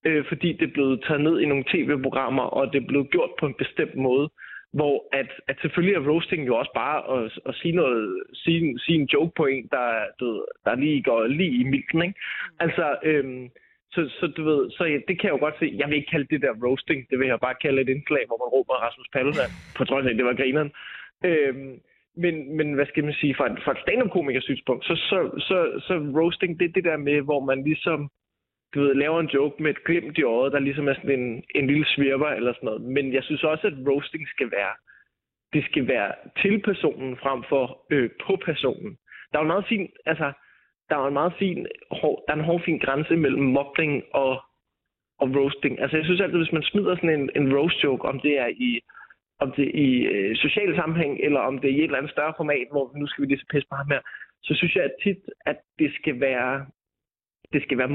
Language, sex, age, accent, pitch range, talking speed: Danish, male, 20-39, native, 135-165 Hz, 225 wpm